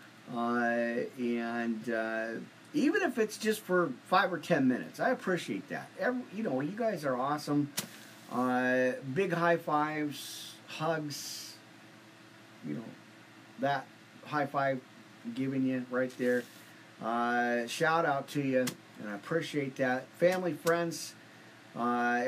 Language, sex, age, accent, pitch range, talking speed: English, male, 40-59, American, 115-160 Hz, 130 wpm